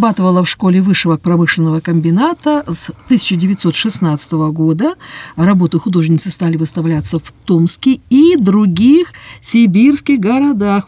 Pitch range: 165-220 Hz